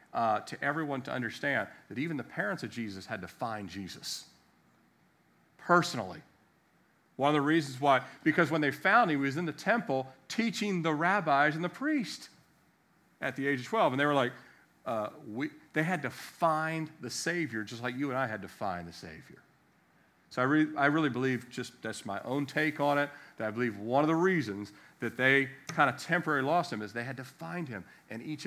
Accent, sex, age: American, male, 40-59